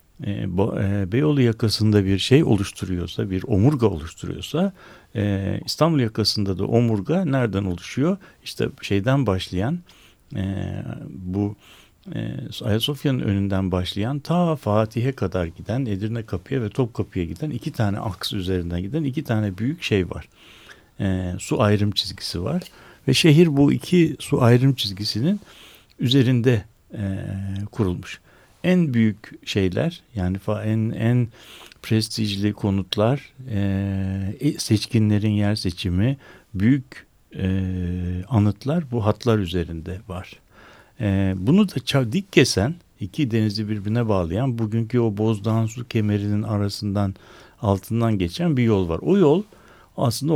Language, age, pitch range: Turkish, 60-79, 95-130 Hz